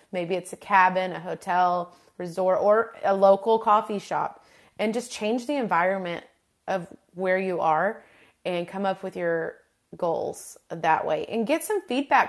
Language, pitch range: English, 180-225 Hz